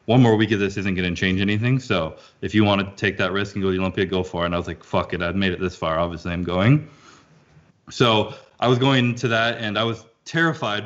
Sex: male